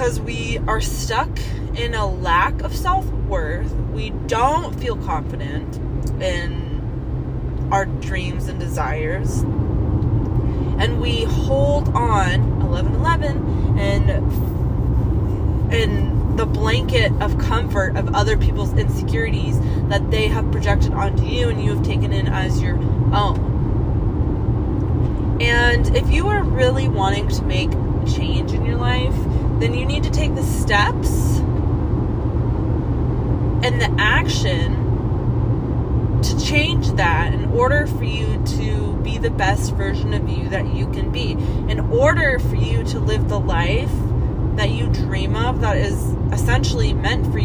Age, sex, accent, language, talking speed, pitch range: 20-39, female, American, English, 135 wpm, 105-115 Hz